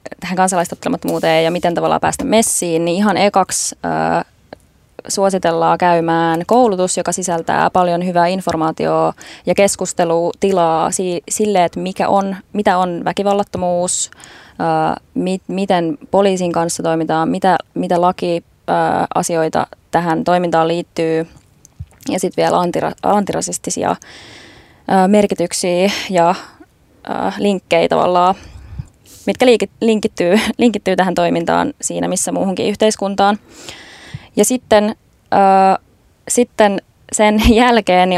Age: 20-39